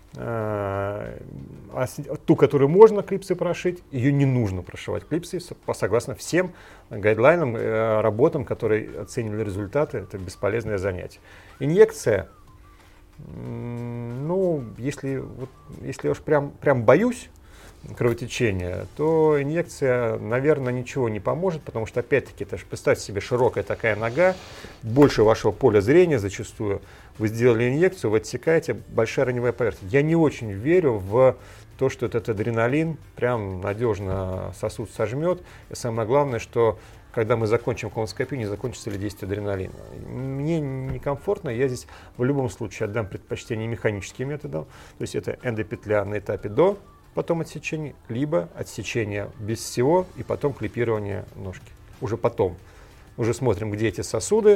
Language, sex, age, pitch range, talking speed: Russian, male, 40-59, 105-140 Hz, 135 wpm